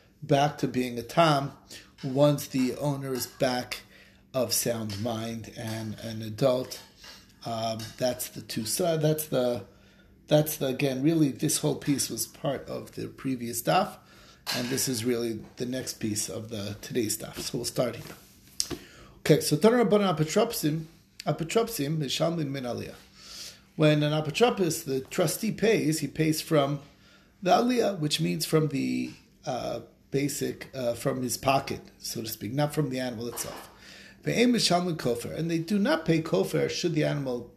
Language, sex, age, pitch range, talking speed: English, male, 30-49, 120-160 Hz, 160 wpm